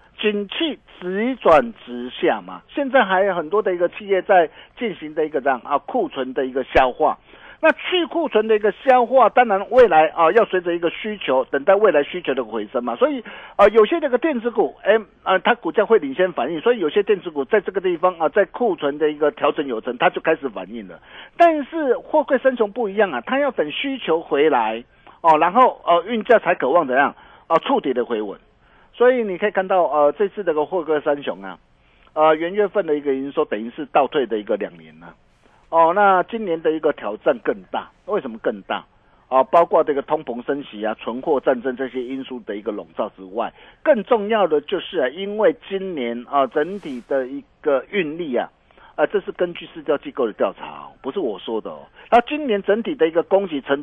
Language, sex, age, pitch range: Chinese, male, 50-69, 150-235 Hz